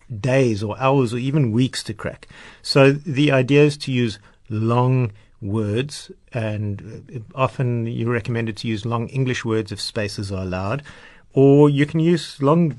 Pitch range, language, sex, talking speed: 110-135 Hz, English, male, 160 wpm